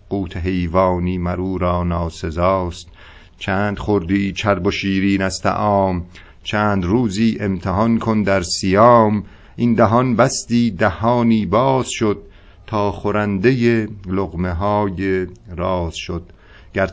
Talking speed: 105 wpm